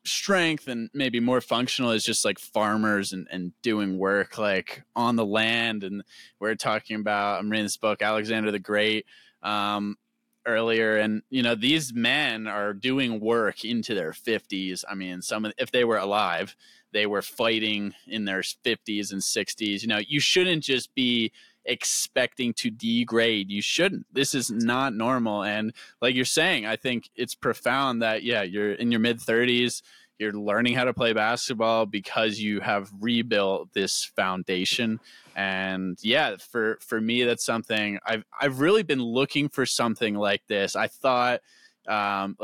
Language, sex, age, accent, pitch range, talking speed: English, male, 20-39, American, 105-120 Hz, 165 wpm